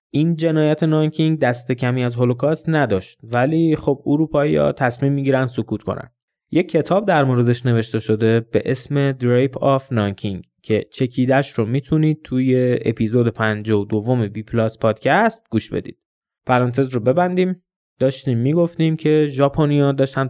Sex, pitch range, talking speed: male, 110-145 Hz, 150 wpm